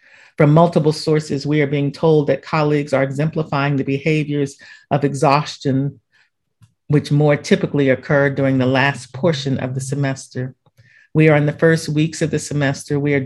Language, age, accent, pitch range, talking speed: English, 50-69, American, 135-155 Hz, 165 wpm